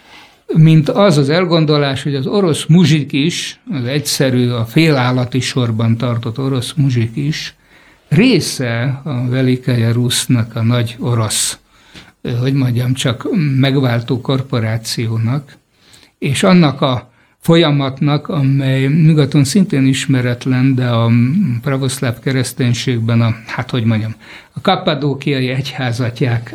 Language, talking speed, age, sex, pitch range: Hungarian, 110 wpm, 60-79, male, 120-145 Hz